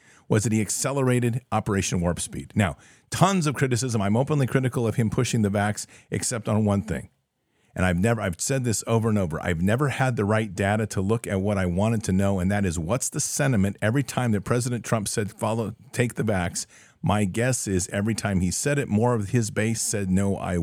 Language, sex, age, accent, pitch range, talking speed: English, male, 50-69, American, 100-125 Hz, 225 wpm